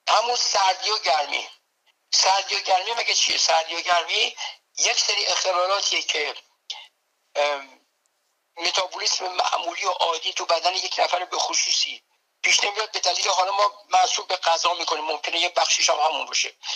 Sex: male